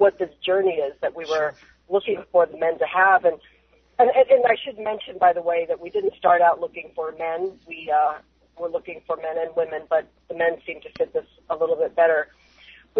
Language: English